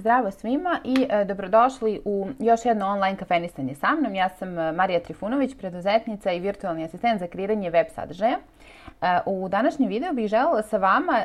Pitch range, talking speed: 185-230 Hz, 170 wpm